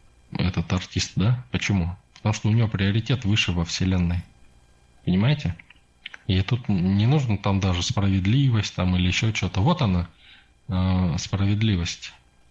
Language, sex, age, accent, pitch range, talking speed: Russian, male, 20-39, native, 80-105 Hz, 130 wpm